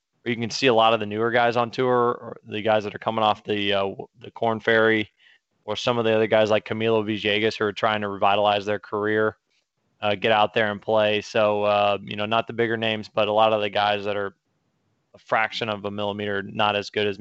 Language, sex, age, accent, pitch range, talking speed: English, male, 20-39, American, 105-115 Hz, 245 wpm